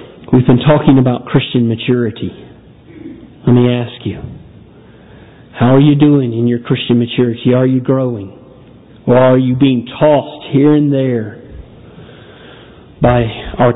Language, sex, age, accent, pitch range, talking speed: English, male, 50-69, American, 115-135 Hz, 135 wpm